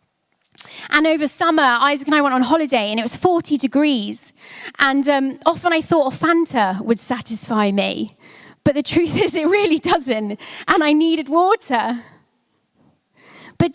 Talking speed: 155 wpm